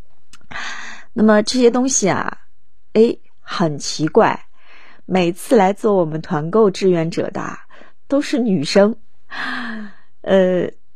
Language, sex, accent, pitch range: Chinese, female, native, 185-245 Hz